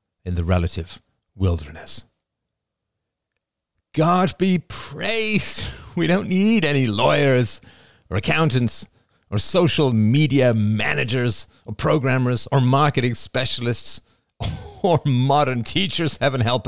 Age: 40-59